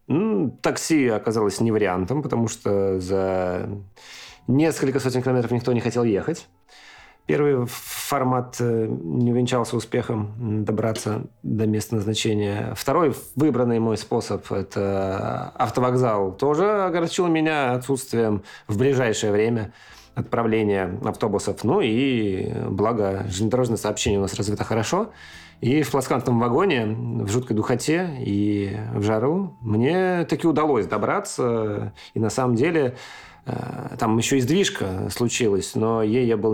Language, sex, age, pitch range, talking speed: Russian, male, 30-49, 105-130 Hz, 125 wpm